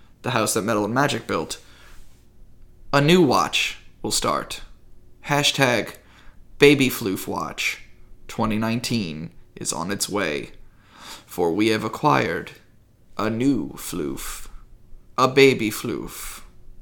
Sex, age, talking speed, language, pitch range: male, 20-39, 110 wpm, English, 110-135 Hz